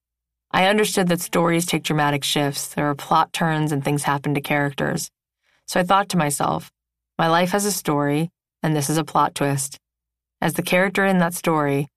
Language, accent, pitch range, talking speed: English, American, 145-170 Hz, 190 wpm